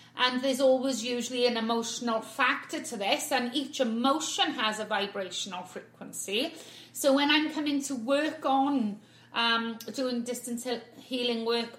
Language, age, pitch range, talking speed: English, 30-49, 235-260 Hz, 145 wpm